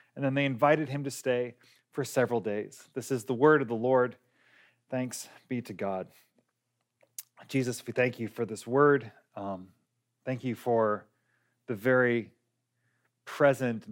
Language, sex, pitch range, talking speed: English, male, 115-145 Hz, 150 wpm